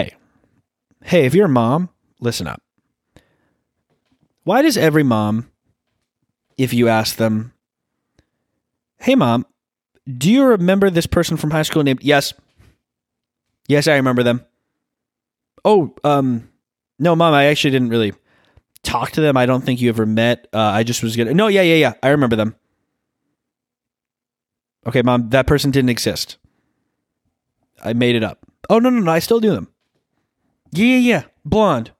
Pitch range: 120-180 Hz